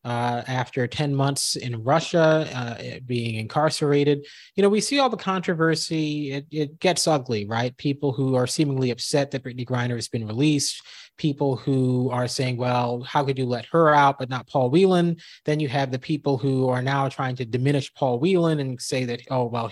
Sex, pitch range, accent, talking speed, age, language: male, 125-155 Hz, American, 200 wpm, 30-49, English